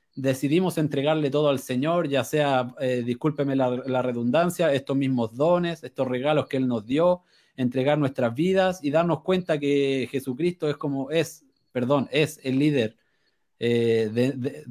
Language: Spanish